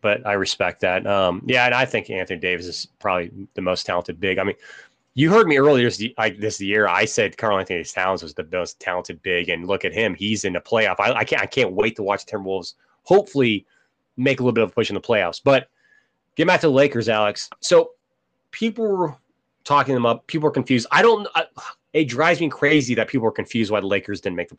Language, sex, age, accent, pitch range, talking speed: English, male, 30-49, American, 105-150 Hz, 235 wpm